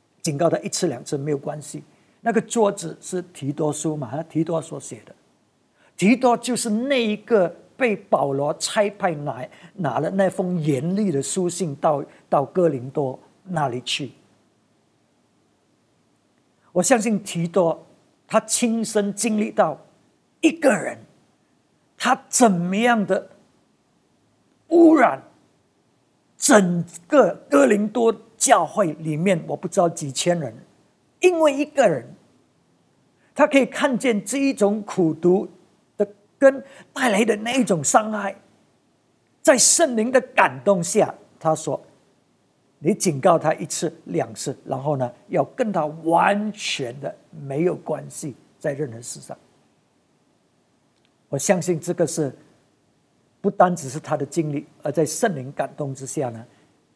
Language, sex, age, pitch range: English, male, 50-69, 155-220 Hz